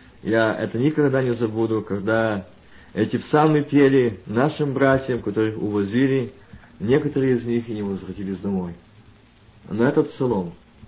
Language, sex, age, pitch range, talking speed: Russian, male, 50-69, 110-180 Hz, 125 wpm